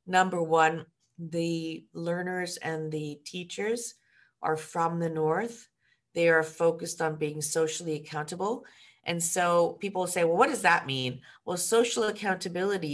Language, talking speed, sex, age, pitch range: English, 140 wpm, female, 40-59, 145-170 Hz